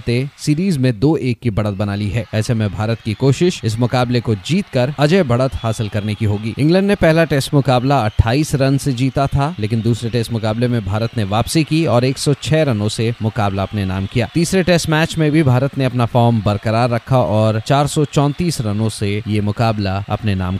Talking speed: 205 wpm